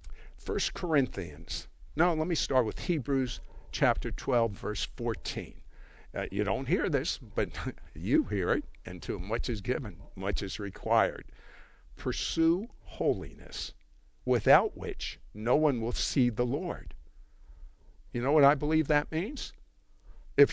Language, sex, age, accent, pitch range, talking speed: English, male, 60-79, American, 100-160 Hz, 135 wpm